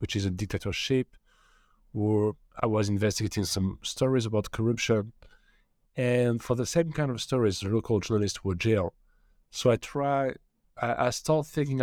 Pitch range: 100-125 Hz